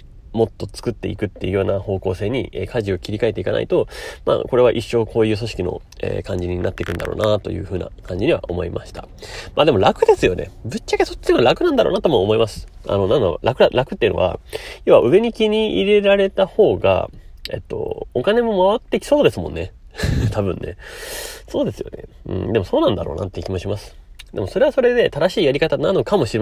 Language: Japanese